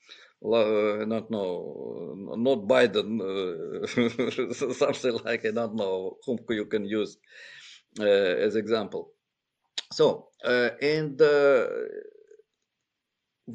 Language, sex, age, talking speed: English, male, 50-69, 100 wpm